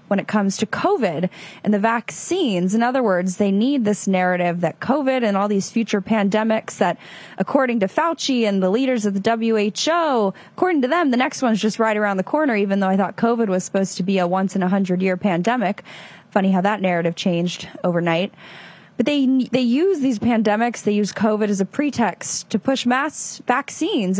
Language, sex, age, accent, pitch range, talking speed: English, female, 10-29, American, 195-250 Hz, 200 wpm